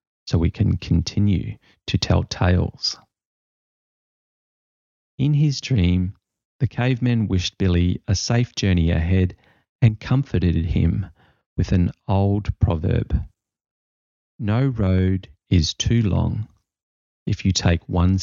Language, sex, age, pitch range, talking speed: English, male, 40-59, 85-110 Hz, 110 wpm